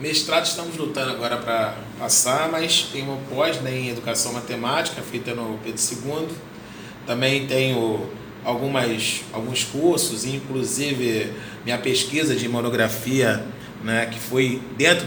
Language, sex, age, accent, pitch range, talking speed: Portuguese, male, 20-39, Brazilian, 115-135 Hz, 125 wpm